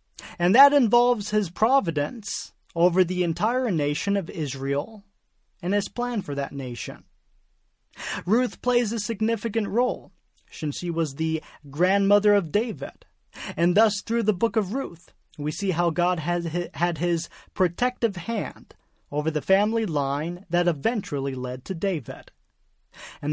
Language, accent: English, American